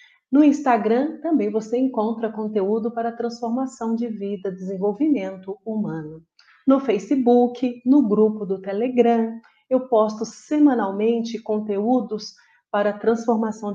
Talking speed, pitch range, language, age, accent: 105 wpm, 210-255 Hz, Portuguese, 40-59, Brazilian